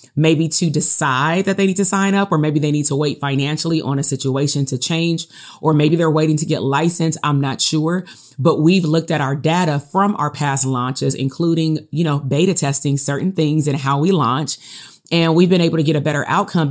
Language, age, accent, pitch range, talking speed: English, 30-49, American, 140-165 Hz, 220 wpm